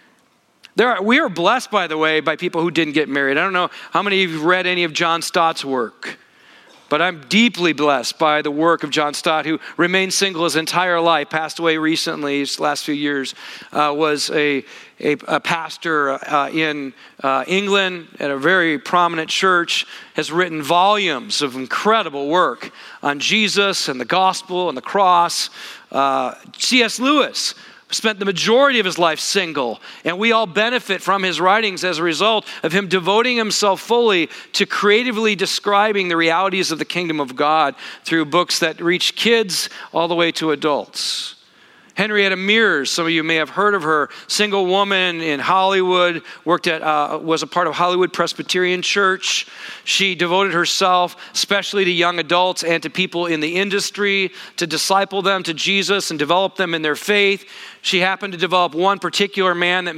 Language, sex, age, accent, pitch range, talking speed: English, male, 40-59, American, 160-195 Hz, 180 wpm